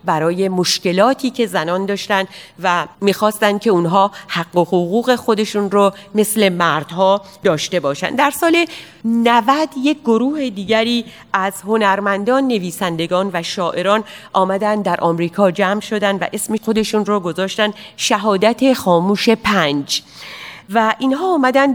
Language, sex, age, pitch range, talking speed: Persian, female, 40-59, 185-230 Hz, 125 wpm